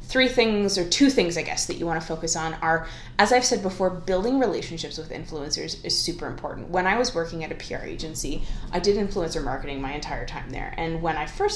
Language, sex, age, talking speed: English, female, 20-39, 235 wpm